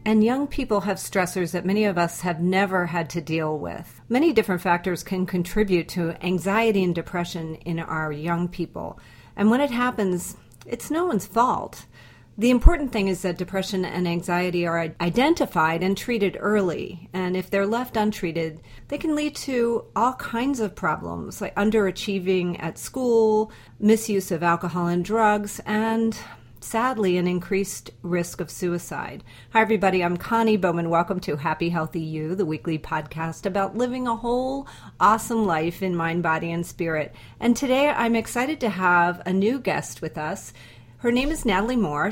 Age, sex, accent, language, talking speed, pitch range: 40-59, female, American, English, 170 wpm, 170-215 Hz